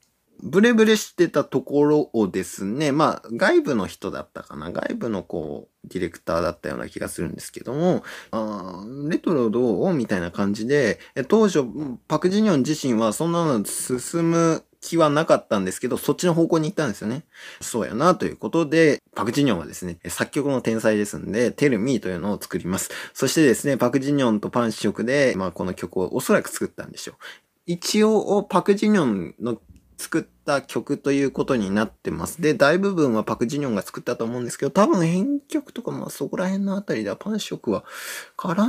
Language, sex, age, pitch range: Japanese, male, 20-39, 110-175 Hz